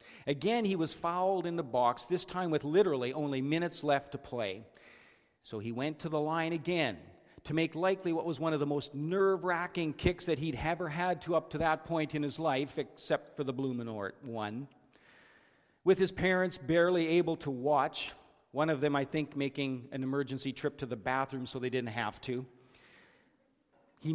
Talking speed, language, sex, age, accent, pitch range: 190 wpm, English, male, 50-69, American, 130-175 Hz